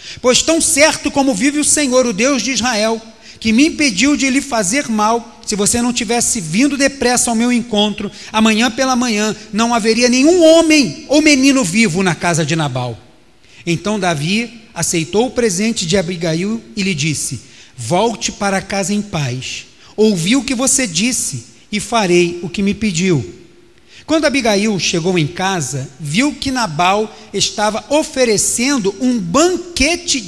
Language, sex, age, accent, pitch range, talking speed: Portuguese, male, 40-59, Brazilian, 190-260 Hz, 155 wpm